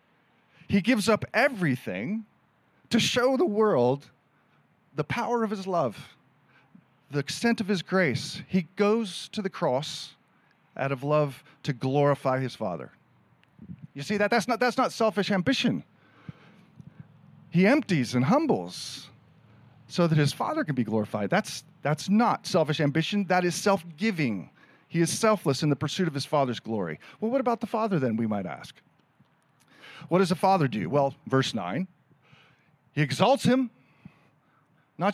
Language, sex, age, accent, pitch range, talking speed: English, male, 40-59, American, 150-225 Hz, 150 wpm